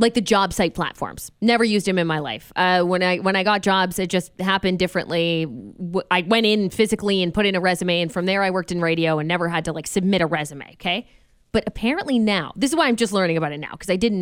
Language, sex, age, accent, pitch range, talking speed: English, female, 20-39, American, 195-285 Hz, 260 wpm